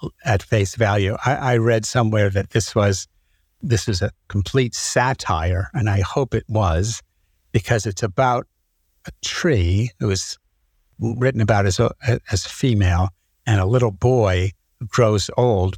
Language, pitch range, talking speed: English, 95-115 Hz, 150 wpm